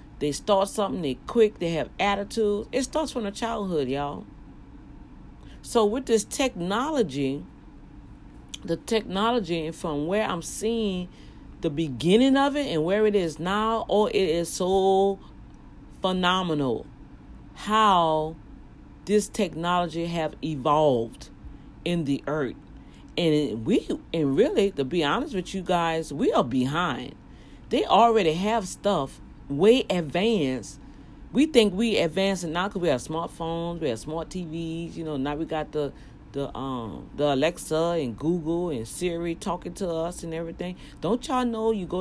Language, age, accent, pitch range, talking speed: English, 40-59, American, 155-215 Hz, 145 wpm